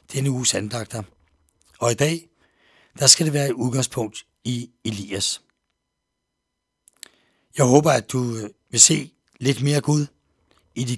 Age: 60-79